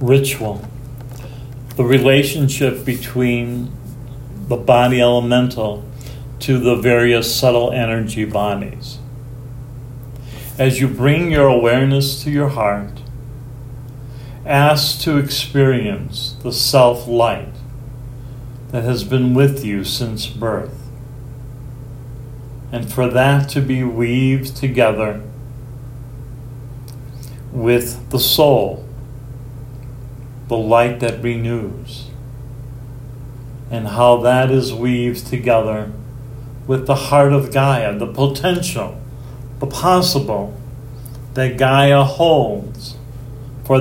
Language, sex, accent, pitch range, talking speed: English, male, American, 120-130 Hz, 90 wpm